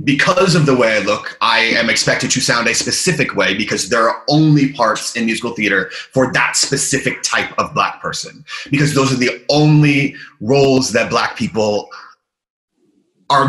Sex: male